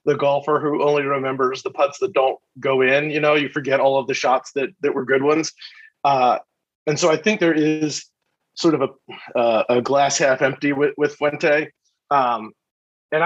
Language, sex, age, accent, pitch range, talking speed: English, male, 30-49, American, 130-150 Hz, 200 wpm